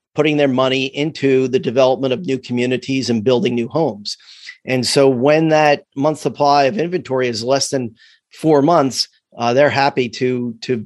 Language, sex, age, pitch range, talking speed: English, male, 40-59, 125-145 Hz, 170 wpm